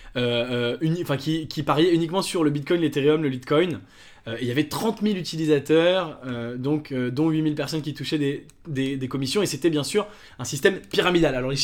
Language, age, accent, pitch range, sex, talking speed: English, 20-39, French, 145-175 Hz, male, 220 wpm